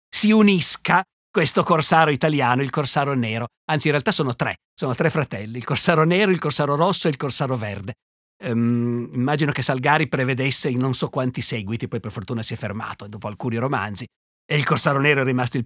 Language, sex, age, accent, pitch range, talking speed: Italian, male, 50-69, native, 130-165 Hz, 195 wpm